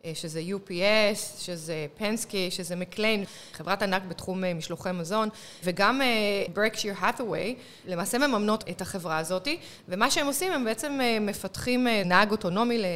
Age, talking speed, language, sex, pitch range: 30-49, 120 wpm, Hebrew, female, 185-230 Hz